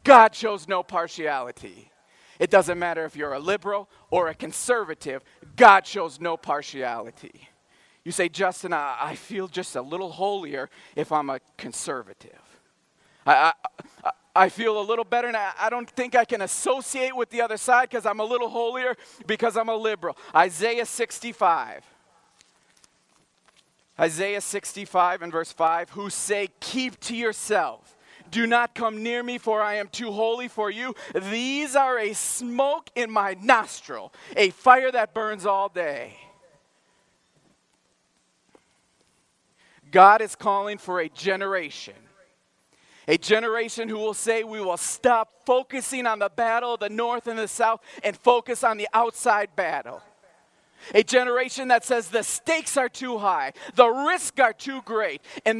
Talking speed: 155 wpm